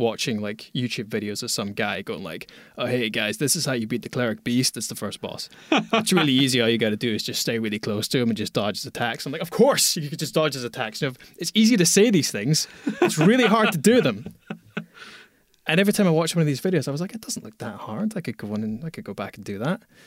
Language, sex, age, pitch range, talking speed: English, male, 20-39, 125-165 Hz, 290 wpm